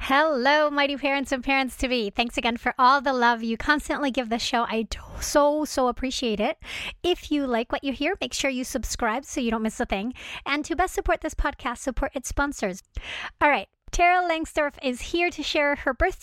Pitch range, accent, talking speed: 245-310 Hz, American, 205 wpm